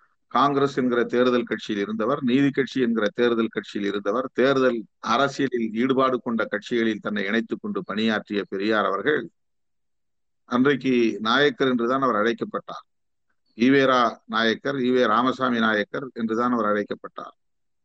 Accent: native